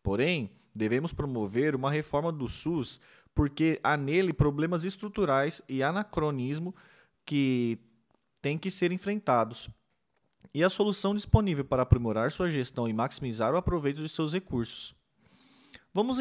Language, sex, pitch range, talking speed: Portuguese, male, 125-180 Hz, 130 wpm